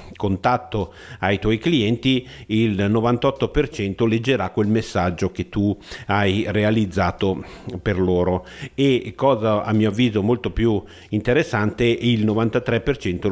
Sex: male